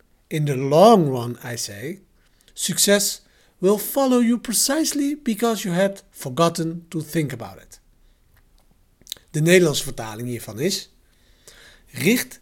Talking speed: 120 wpm